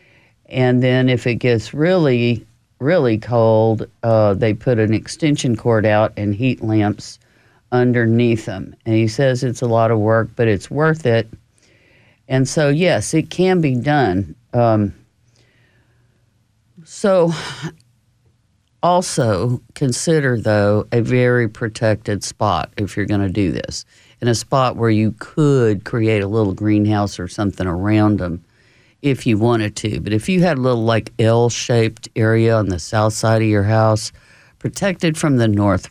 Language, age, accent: English, 50-69, American